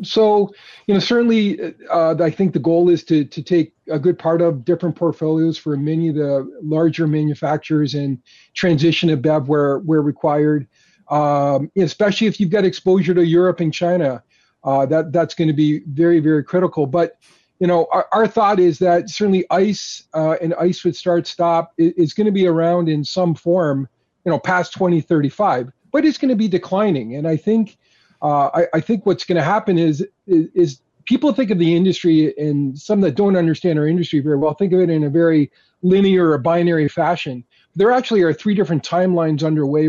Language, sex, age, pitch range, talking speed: English, male, 40-59, 155-185 Hz, 200 wpm